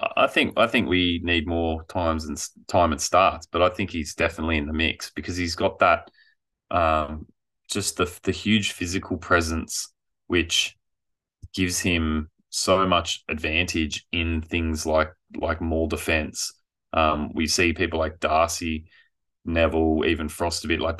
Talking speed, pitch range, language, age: 155 wpm, 75-85 Hz, English, 20-39